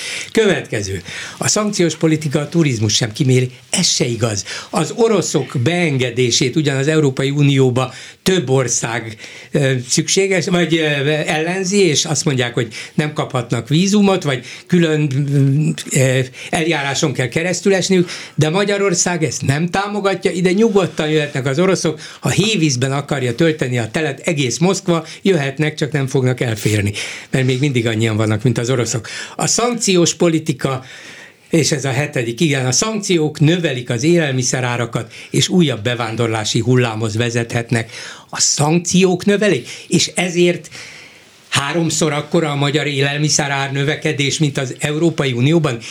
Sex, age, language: male, 60-79, Hungarian